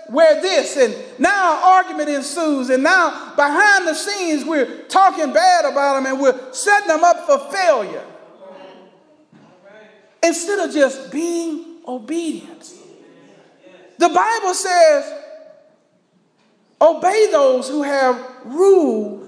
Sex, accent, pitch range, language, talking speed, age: male, American, 290-370 Hz, English, 110 wpm, 40-59